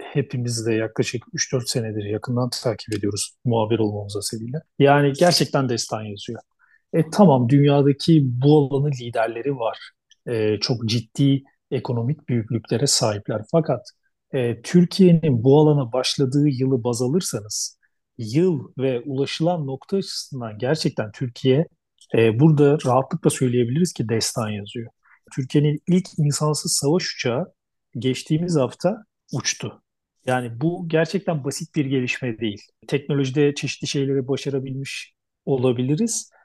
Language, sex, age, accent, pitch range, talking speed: Turkish, male, 40-59, native, 125-160 Hz, 115 wpm